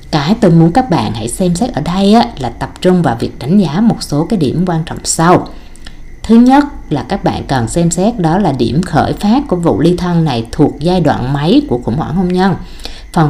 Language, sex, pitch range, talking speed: Vietnamese, female, 140-195 Hz, 235 wpm